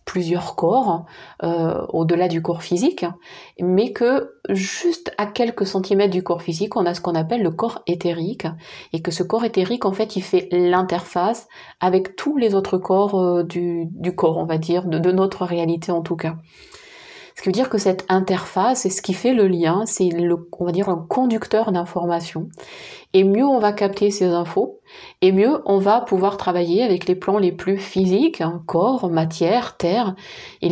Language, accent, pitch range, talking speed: French, French, 170-200 Hz, 190 wpm